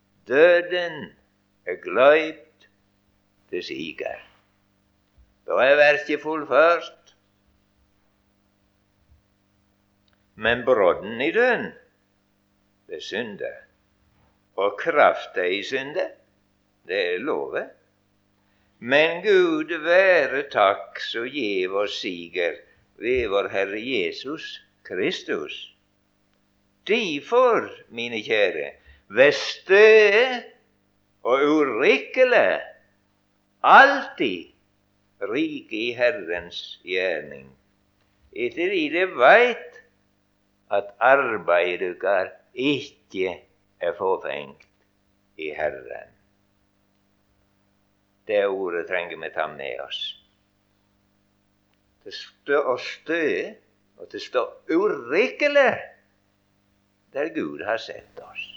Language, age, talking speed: English, 60-79, 80 wpm